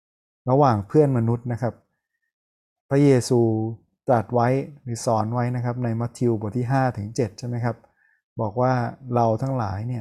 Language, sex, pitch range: Thai, male, 110-130 Hz